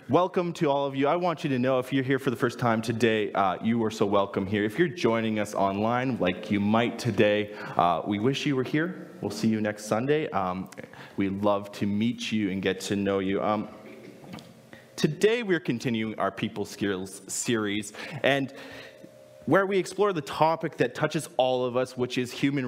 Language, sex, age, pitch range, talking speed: English, male, 30-49, 100-135 Hz, 205 wpm